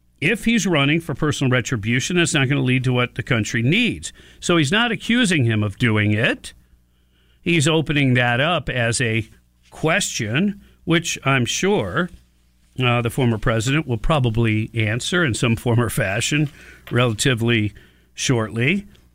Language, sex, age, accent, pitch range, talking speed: English, male, 50-69, American, 100-155 Hz, 150 wpm